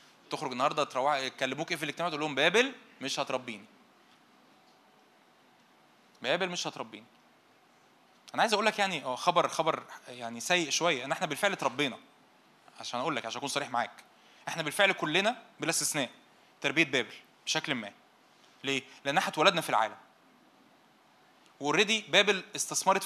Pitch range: 130-180 Hz